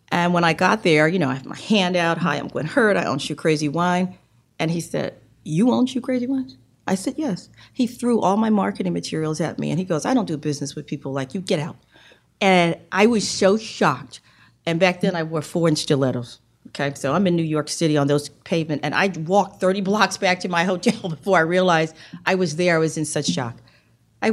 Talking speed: 235 wpm